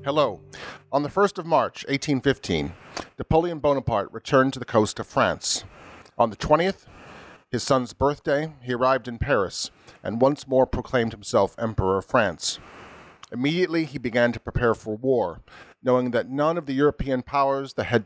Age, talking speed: 40-59, 165 wpm